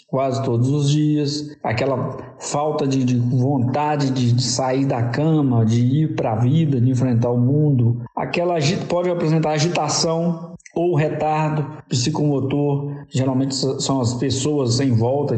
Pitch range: 130-165 Hz